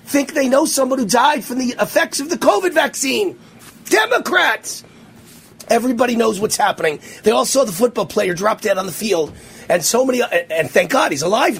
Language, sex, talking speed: English, male, 190 wpm